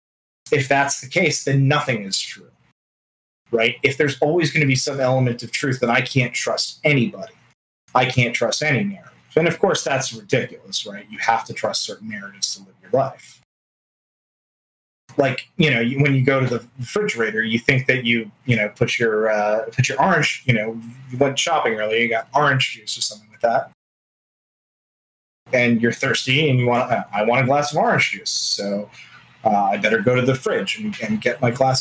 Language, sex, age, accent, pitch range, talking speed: English, male, 30-49, American, 120-145 Hz, 205 wpm